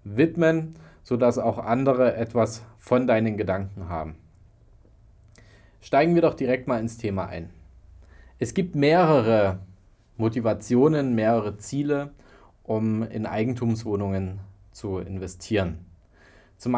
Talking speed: 105 wpm